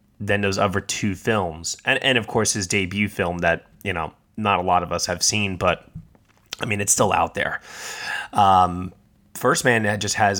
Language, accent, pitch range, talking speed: English, American, 90-105 Hz, 195 wpm